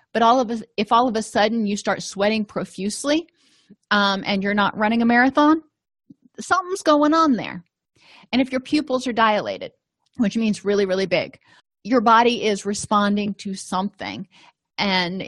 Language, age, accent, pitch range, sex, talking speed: English, 30-49, American, 190-235 Hz, female, 165 wpm